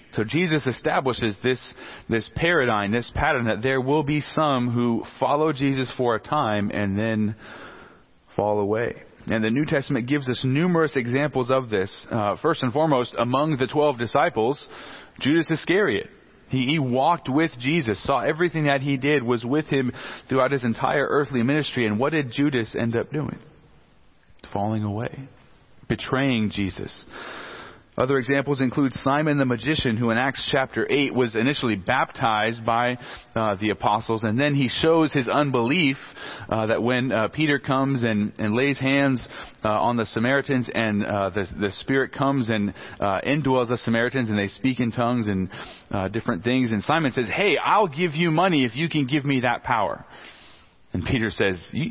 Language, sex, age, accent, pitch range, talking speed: English, male, 40-59, American, 115-145 Hz, 170 wpm